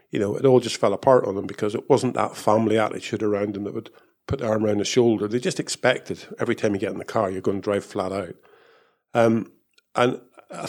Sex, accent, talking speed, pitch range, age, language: male, British, 240 wpm, 110-130 Hz, 50-69, English